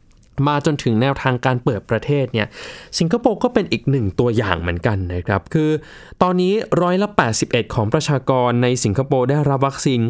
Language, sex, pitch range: Thai, male, 120-160 Hz